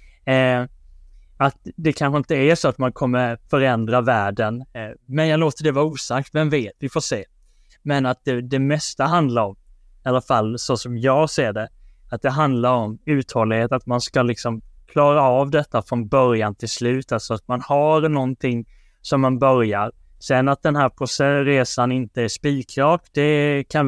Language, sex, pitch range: Swedish, male, 115-135 Hz